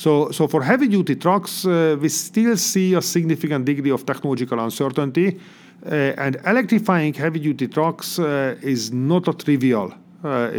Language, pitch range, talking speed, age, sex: English, 130-185 Hz, 160 wpm, 40-59, male